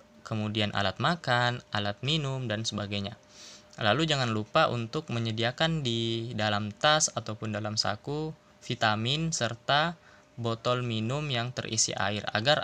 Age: 20-39